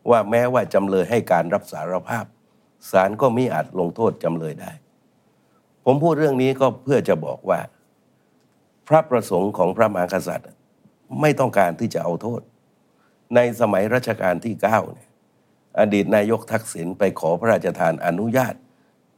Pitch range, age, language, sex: 95-120 Hz, 60-79, Thai, male